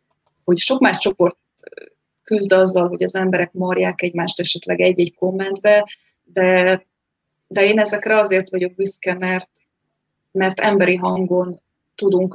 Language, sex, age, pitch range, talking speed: Hungarian, female, 20-39, 180-205 Hz, 125 wpm